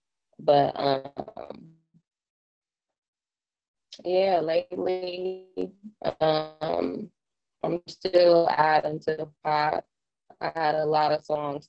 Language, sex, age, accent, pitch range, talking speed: English, female, 20-39, American, 140-160 Hz, 85 wpm